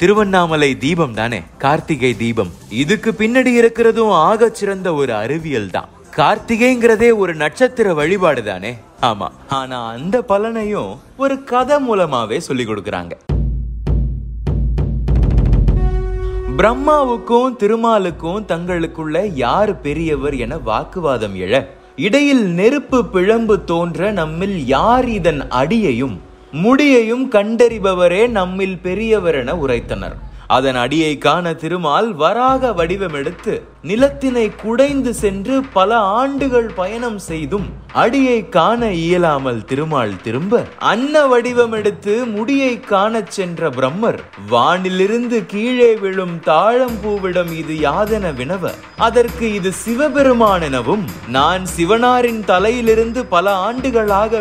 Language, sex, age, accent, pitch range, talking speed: Tamil, male, 30-49, native, 165-230 Hz, 80 wpm